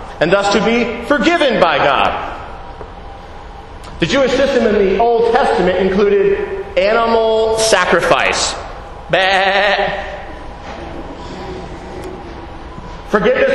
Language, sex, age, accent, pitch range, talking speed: English, male, 40-59, American, 195-265 Hz, 80 wpm